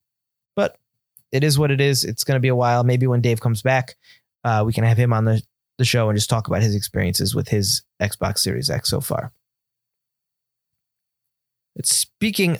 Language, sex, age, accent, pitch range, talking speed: English, male, 20-39, American, 115-145 Hz, 190 wpm